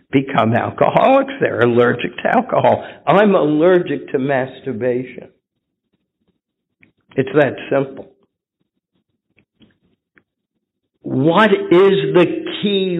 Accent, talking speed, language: American, 80 wpm, English